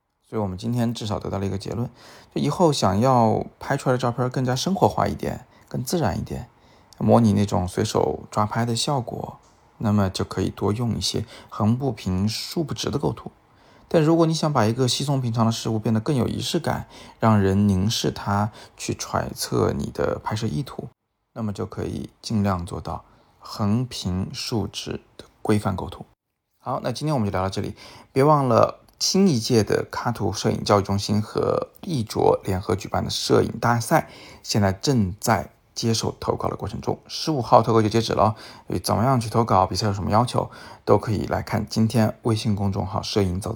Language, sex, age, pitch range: Chinese, male, 20-39, 100-120 Hz